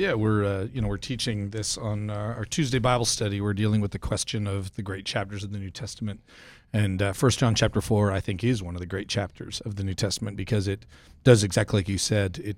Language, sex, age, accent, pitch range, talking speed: English, male, 40-59, American, 100-115 Hz, 250 wpm